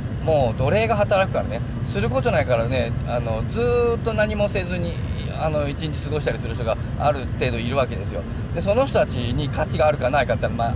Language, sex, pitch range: Japanese, male, 115-140 Hz